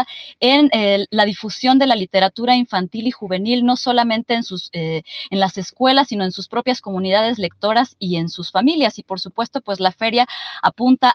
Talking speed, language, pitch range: 180 wpm, Spanish, 195-240 Hz